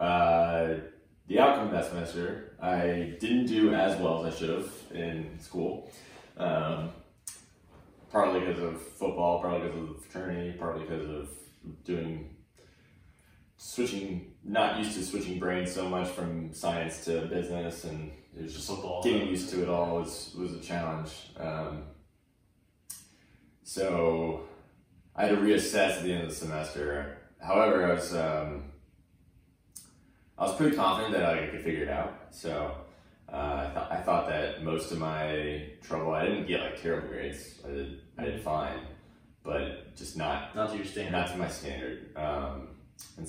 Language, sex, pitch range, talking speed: English, male, 75-90 Hz, 165 wpm